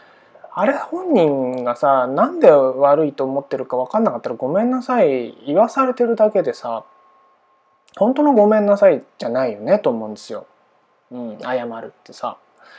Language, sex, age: Japanese, male, 20-39